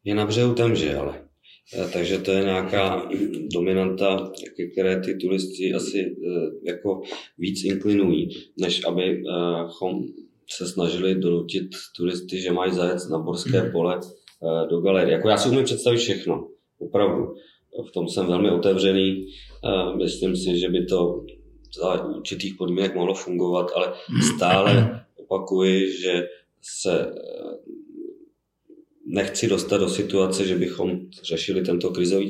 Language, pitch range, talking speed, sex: Czech, 90-100 Hz, 125 wpm, male